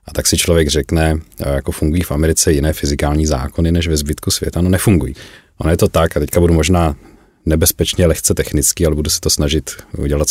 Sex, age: male, 40-59